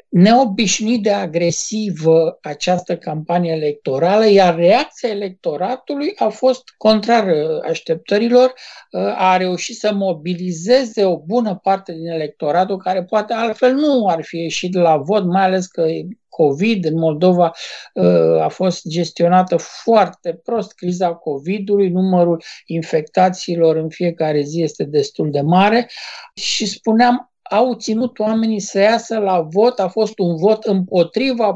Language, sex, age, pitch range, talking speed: Romanian, male, 60-79, 170-215 Hz, 125 wpm